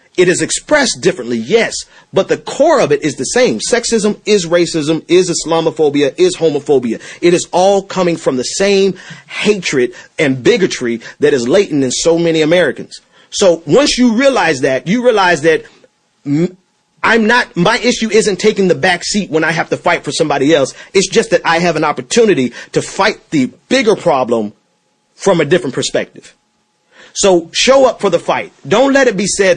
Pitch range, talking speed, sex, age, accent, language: 155-205 Hz, 180 wpm, male, 40-59, American, English